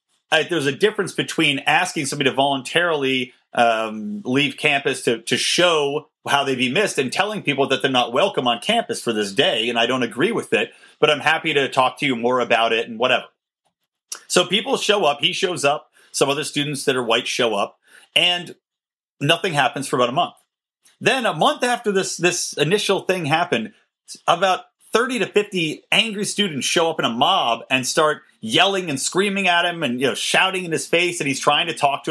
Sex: male